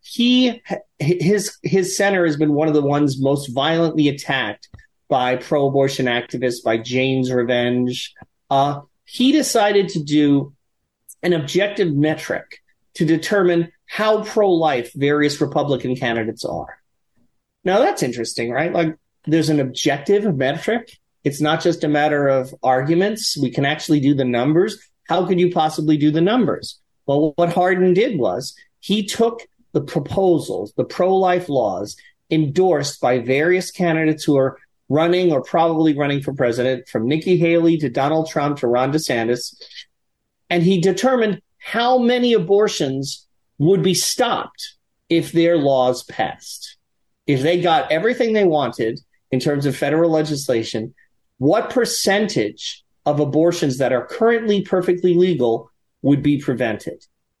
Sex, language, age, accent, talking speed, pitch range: male, English, 30-49, American, 140 wpm, 135-185 Hz